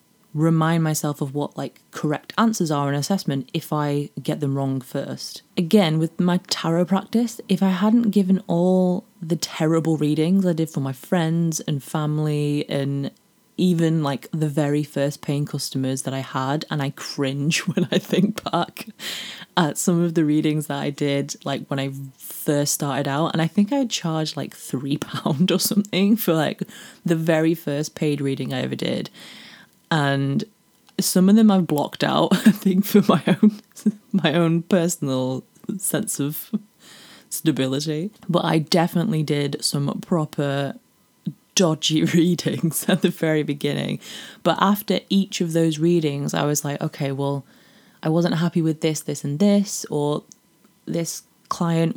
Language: English